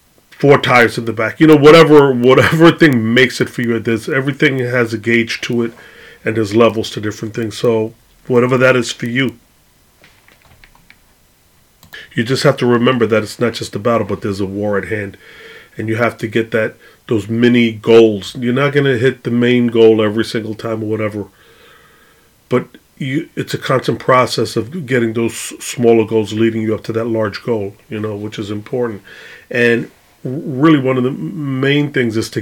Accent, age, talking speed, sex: American, 30-49, 195 wpm, male